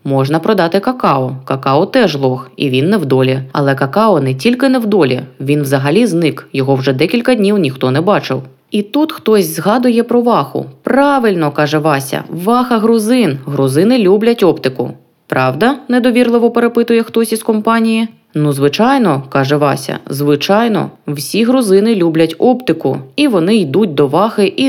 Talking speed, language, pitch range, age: 150 wpm, Ukrainian, 145-225 Hz, 20-39